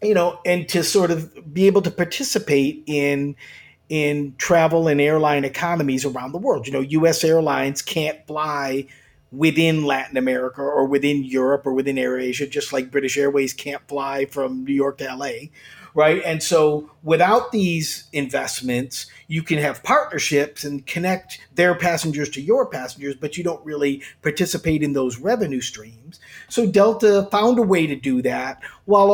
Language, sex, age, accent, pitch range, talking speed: English, male, 50-69, American, 140-160 Hz, 165 wpm